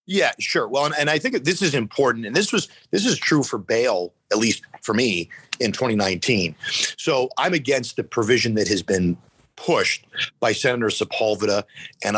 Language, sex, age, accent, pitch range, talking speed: English, male, 40-59, American, 100-125 Hz, 180 wpm